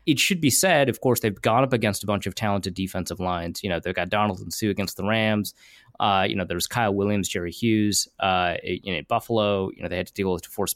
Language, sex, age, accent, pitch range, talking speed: English, male, 20-39, American, 100-120 Hz, 255 wpm